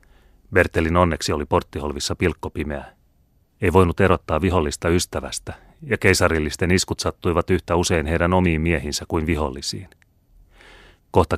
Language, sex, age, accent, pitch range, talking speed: Finnish, male, 30-49, native, 80-95 Hz, 115 wpm